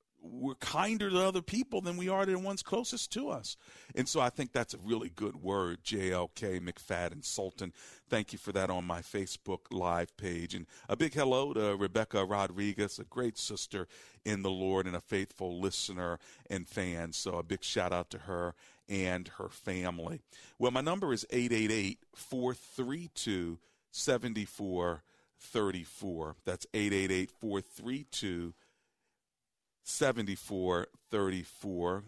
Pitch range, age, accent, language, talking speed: 90-110 Hz, 50-69, American, English, 135 wpm